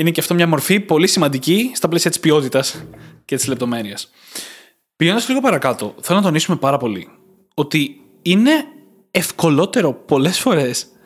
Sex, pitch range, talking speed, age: male, 140-195 Hz, 145 wpm, 20-39